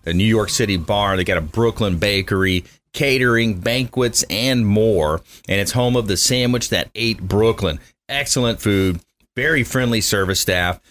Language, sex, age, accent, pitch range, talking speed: English, male, 30-49, American, 90-115 Hz, 160 wpm